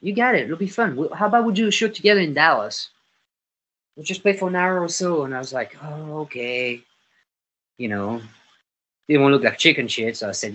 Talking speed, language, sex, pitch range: 230 wpm, English, male, 110-165 Hz